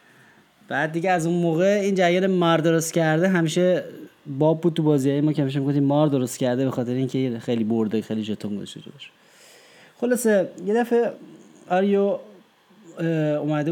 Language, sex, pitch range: Persian, male, 130-165 Hz